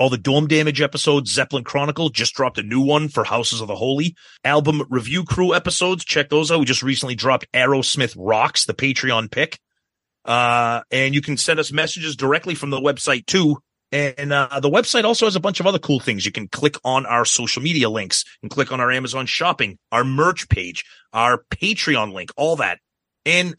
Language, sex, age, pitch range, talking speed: English, male, 30-49, 120-150 Hz, 205 wpm